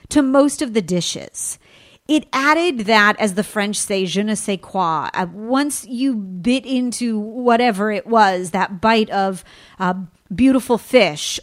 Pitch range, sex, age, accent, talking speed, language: 195-260 Hz, female, 40-59, American, 160 wpm, English